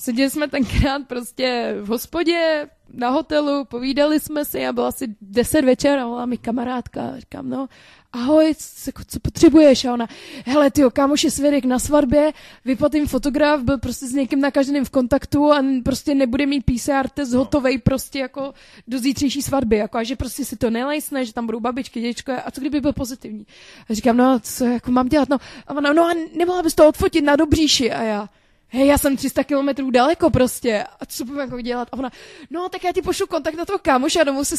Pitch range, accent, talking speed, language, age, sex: 250-300 Hz, native, 205 wpm, Czech, 20-39, female